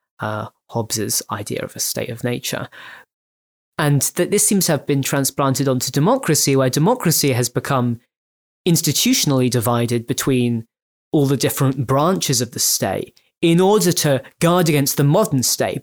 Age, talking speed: 20-39, 150 wpm